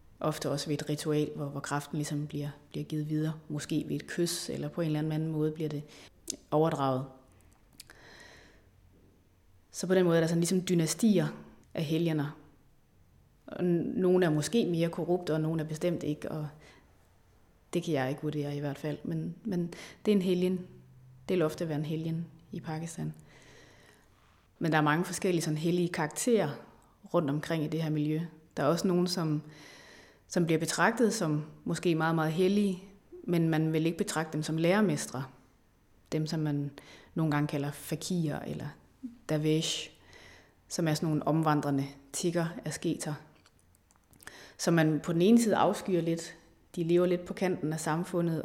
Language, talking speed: Danish, 170 wpm